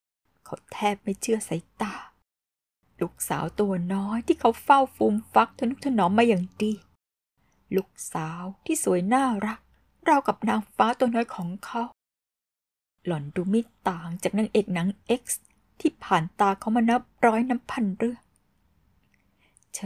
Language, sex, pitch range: Thai, female, 170-225 Hz